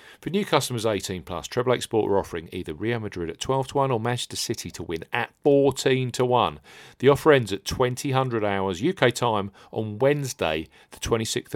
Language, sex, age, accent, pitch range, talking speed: English, male, 40-59, British, 90-135 Hz, 195 wpm